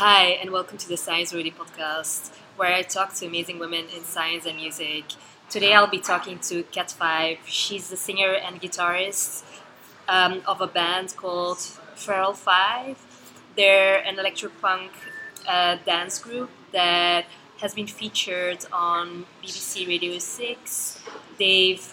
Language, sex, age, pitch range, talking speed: English, female, 20-39, 175-195 Hz, 145 wpm